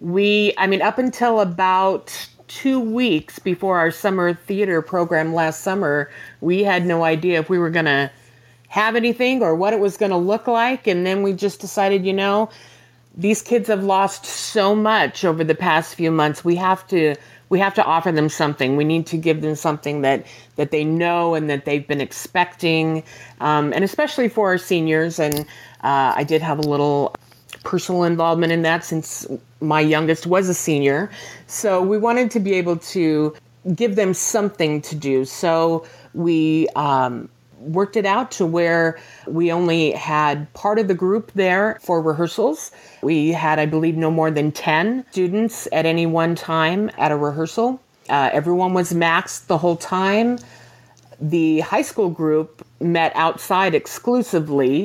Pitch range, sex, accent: 155-195 Hz, female, American